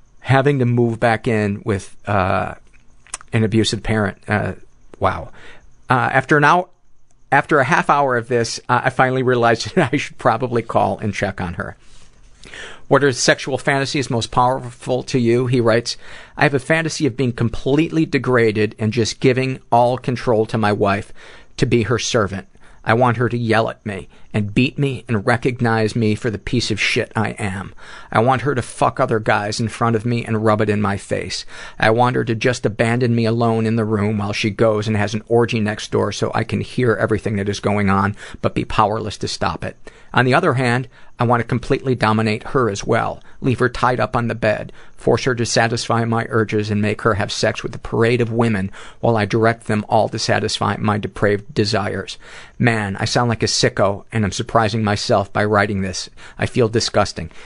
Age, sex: 50-69, male